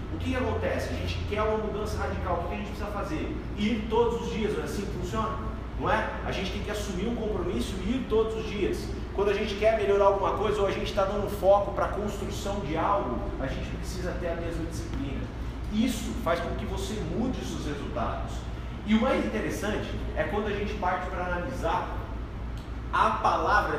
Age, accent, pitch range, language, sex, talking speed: 40-59, Brazilian, 175-220 Hz, Portuguese, male, 215 wpm